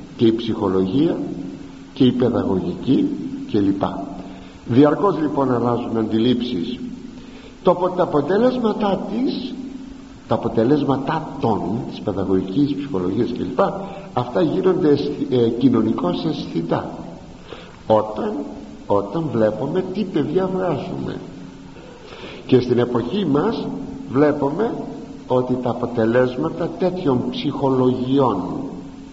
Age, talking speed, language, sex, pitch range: 50-69, 90 wpm, Greek, male, 120-185 Hz